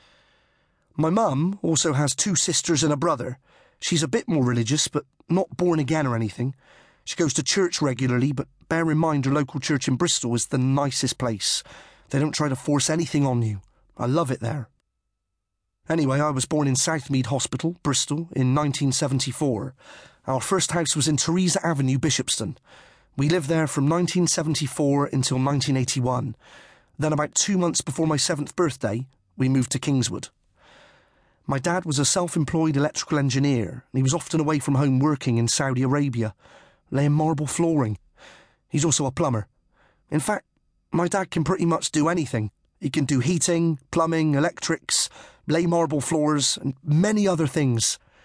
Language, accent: English, British